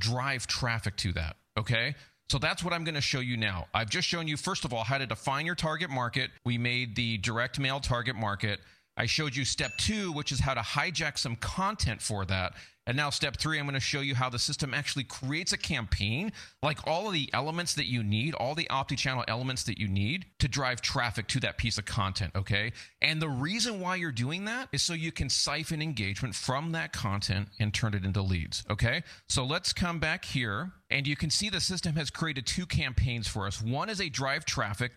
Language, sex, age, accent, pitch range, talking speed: English, male, 40-59, American, 110-150 Hz, 225 wpm